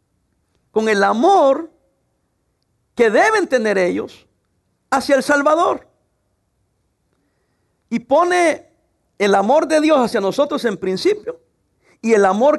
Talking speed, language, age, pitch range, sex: 110 wpm, English, 50-69, 165-270 Hz, male